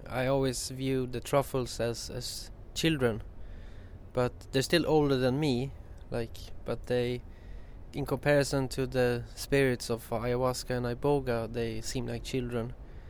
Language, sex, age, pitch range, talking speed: English, male, 20-39, 110-135 Hz, 135 wpm